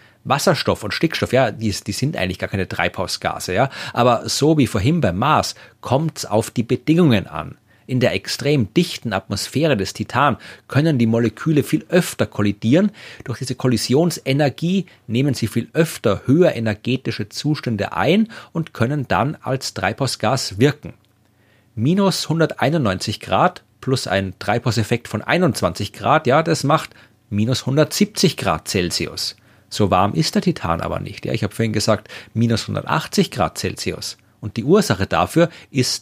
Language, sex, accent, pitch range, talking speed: German, male, German, 105-140 Hz, 155 wpm